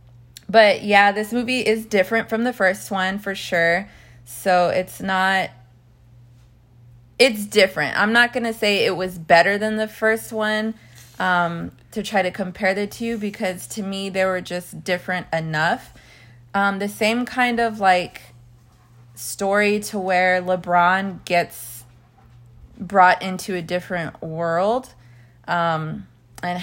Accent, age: American, 20-39